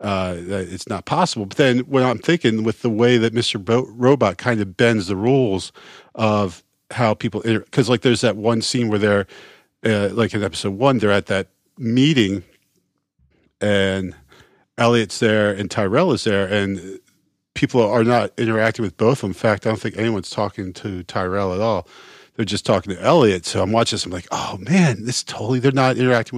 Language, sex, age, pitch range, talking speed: English, male, 40-59, 100-120 Hz, 200 wpm